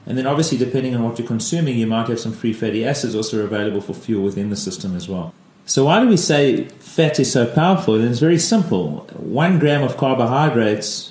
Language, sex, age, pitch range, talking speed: English, male, 30-49, 115-145 Hz, 215 wpm